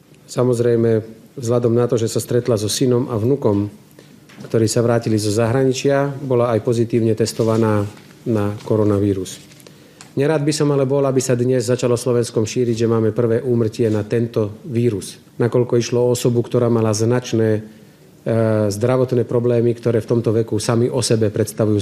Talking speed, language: 160 wpm, Slovak